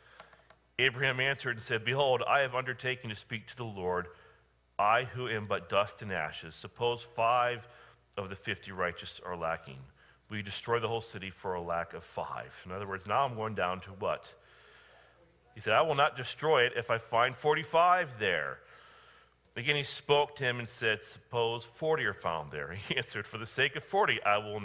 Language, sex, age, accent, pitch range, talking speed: English, male, 40-59, American, 100-145 Hz, 195 wpm